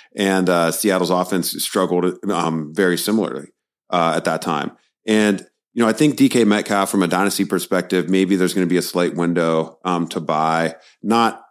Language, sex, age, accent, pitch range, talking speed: English, male, 40-59, American, 85-100 Hz, 180 wpm